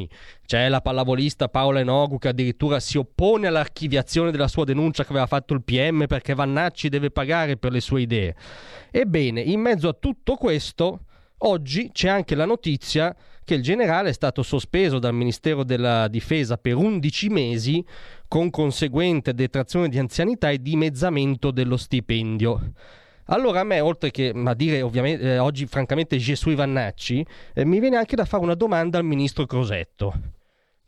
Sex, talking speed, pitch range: male, 160 wpm, 125-160 Hz